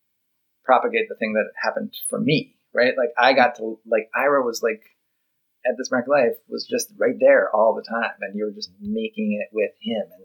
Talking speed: 205 wpm